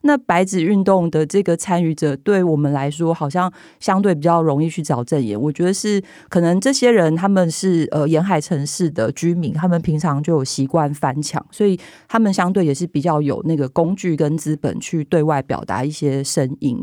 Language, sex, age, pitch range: Chinese, female, 20-39, 150-180 Hz